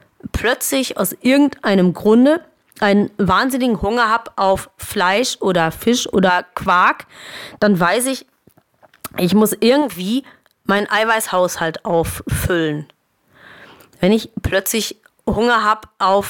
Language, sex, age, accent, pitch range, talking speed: German, female, 30-49, German, 190-230 Hz, 105 wpm